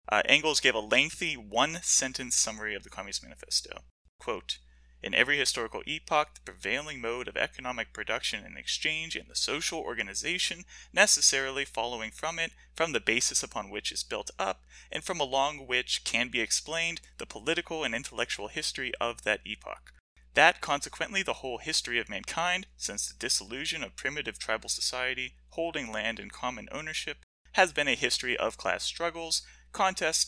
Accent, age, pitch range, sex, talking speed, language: American, 30-49, 110-160 Hz, male, 165 wpm, English